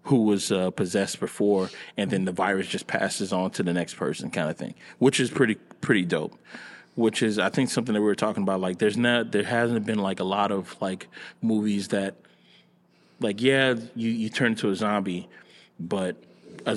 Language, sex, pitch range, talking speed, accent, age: English, male, 100-120 Hz, 205 wpm, American, 30-49